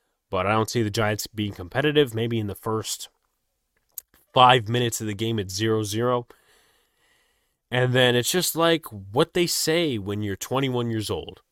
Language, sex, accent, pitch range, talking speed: English, male, American, 105-130 Hz, 165 wpm